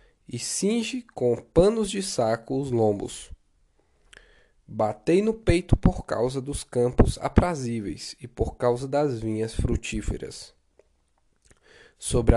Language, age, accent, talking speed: Portuguese, 10-29, Brazilian, 110 wpm